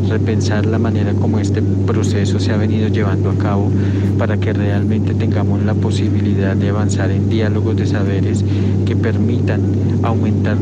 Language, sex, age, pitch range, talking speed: Spanish, male, 50-69, 100-105 Hz, 155 wpm